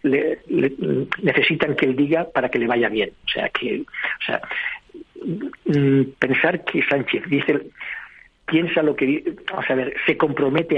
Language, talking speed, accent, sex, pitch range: Spanish, 155 wpm, Spanish, male, 130-150 Hz